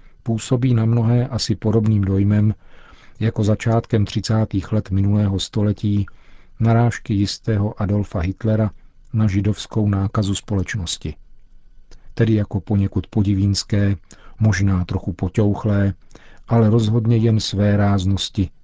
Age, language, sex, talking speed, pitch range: 50-69, Czech, male, 105 wpm, 95-110 Hz